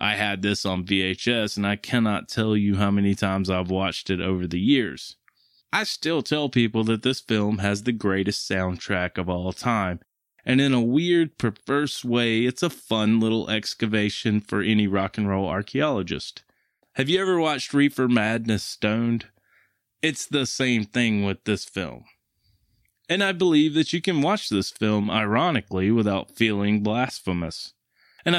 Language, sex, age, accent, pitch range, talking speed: English, male, 20-39, American, 100-135 Hz, 165 wpm